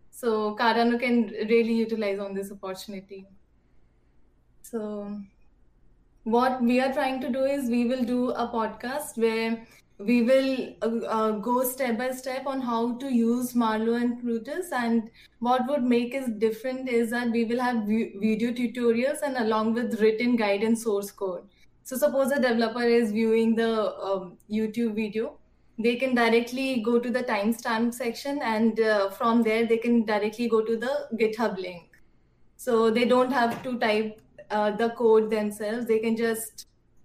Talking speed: 165 wpm